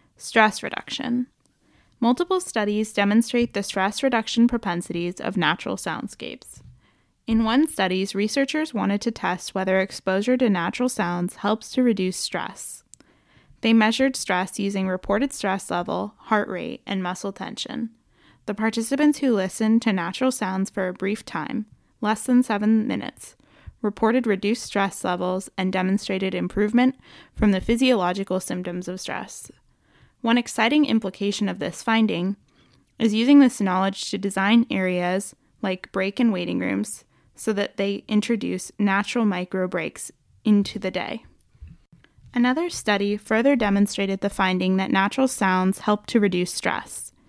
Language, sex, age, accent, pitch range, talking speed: English, female, 20-39, American, 190-240 Hz, 135 wpm